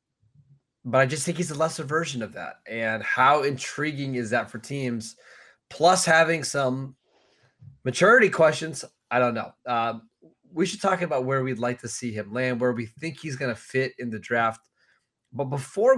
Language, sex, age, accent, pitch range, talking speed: English, male, 20-39, American, 125-160 Hz, 185 wpm